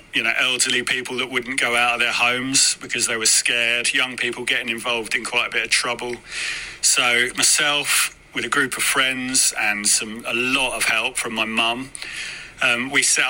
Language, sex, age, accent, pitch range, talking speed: English, male, 30-49, British, 115-130 Hz, 195 wpm